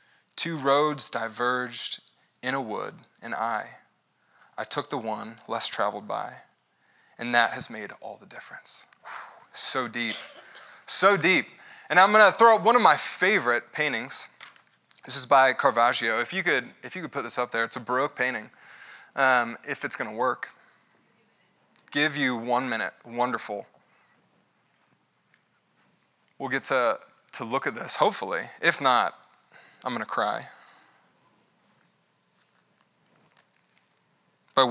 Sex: male